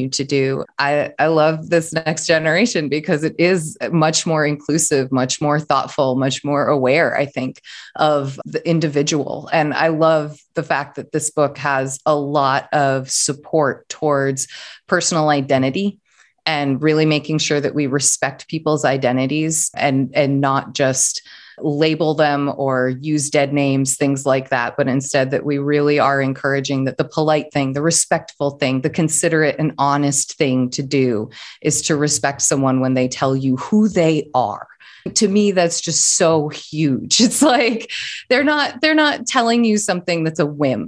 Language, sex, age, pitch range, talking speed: English, female, 20-39, 140-160 Hz, 165 wpm